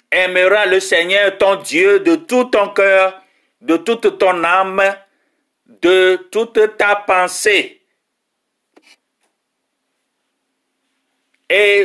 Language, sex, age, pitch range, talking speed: French, male, 50-69, 185-270 Hz, 90 wpm